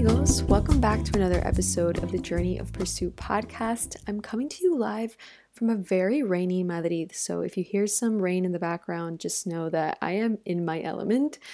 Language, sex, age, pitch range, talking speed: English, female, 20-39, 170-215 Hz, 205 wpm